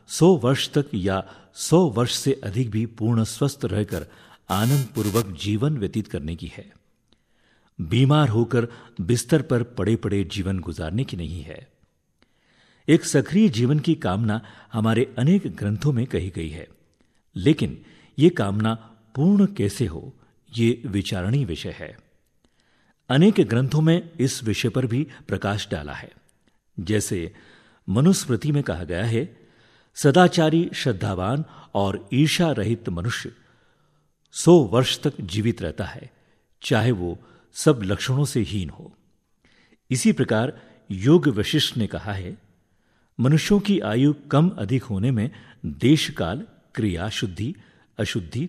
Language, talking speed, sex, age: Hindi, 130 wpm, male, 50-69